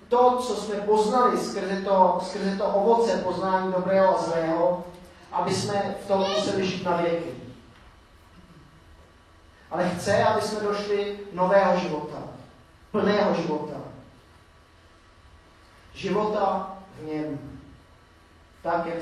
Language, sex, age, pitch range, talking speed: Czech, male, 30-49, 115-190 Hz, 105 wpm